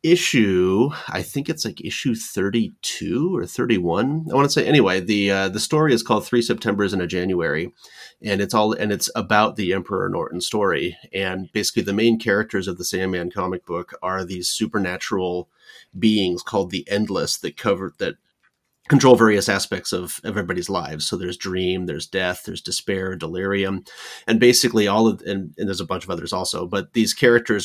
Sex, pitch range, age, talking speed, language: male, 95-115 Hz, 30-49, 185 wpm, English